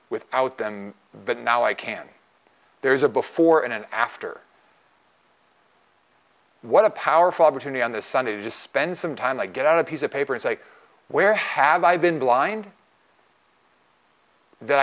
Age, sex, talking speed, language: 30-49, male, 160 wpm, English